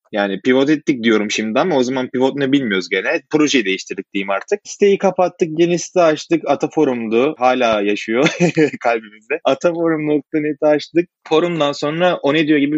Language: Turkish